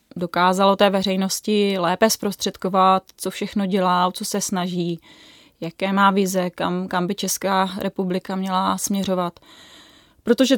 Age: 20-39